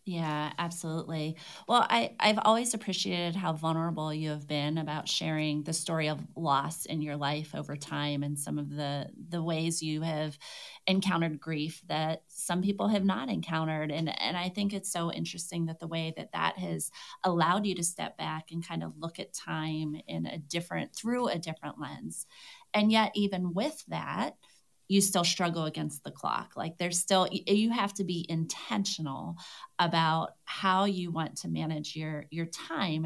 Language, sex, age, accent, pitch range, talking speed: English, female, 30-49, American, 155-195 Hz, 175 wpm